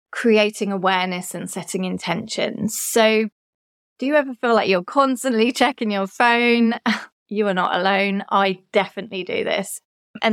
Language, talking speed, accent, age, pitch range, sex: English, 145 wpm, British, 20-39, 190-225 Hz, female